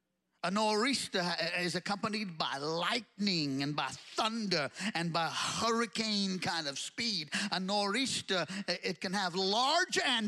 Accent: American